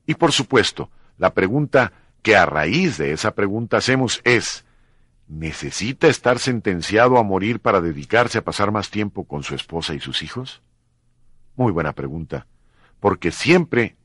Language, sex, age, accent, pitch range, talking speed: Spanish, male, 50-69, Mexican, 85-145 Hz, 150 wpm